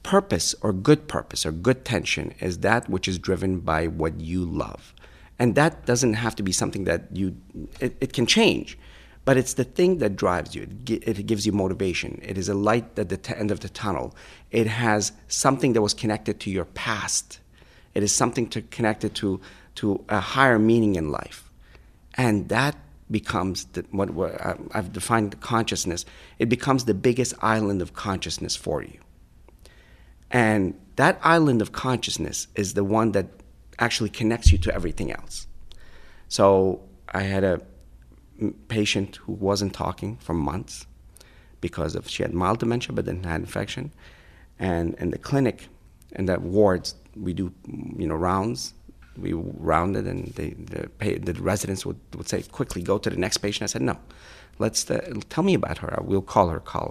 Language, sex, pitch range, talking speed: English, male, 90-115 Hz, 175 wpm